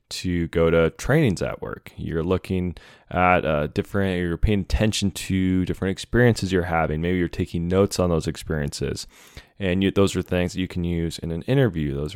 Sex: male